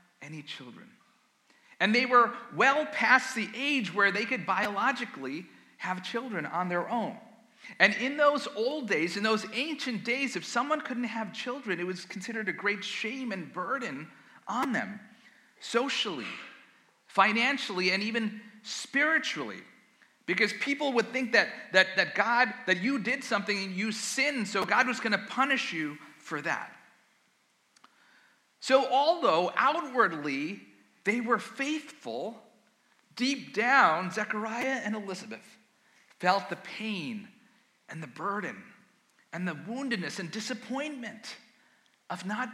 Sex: male